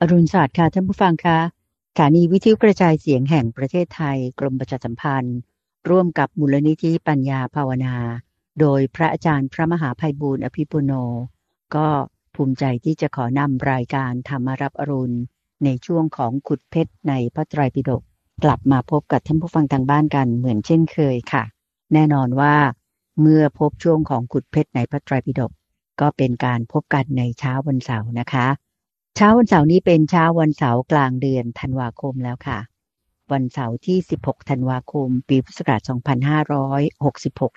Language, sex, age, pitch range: Thai, female, 60-79, 125-150 Hz